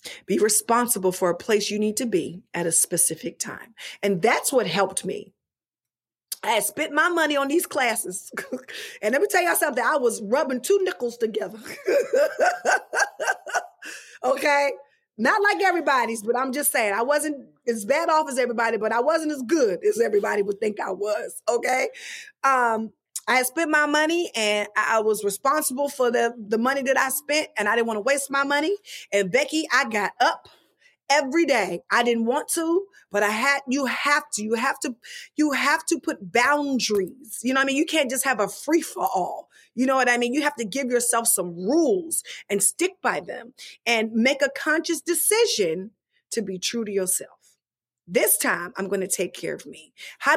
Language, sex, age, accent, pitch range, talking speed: English, female, 30-49, American, 220-310 Hz, 195 wpm